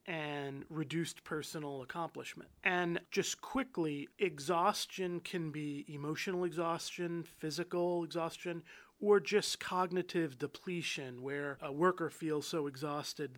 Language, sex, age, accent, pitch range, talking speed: English, male, 30-49, American, 145-175 Hz, 110 wpm